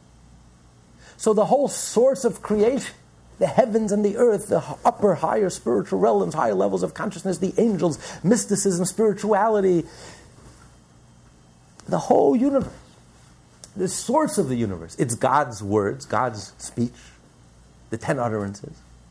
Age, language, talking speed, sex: 50-69, English, 125 wpm, male